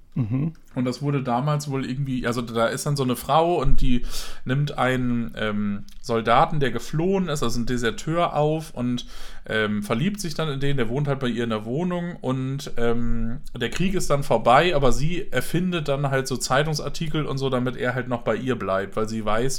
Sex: male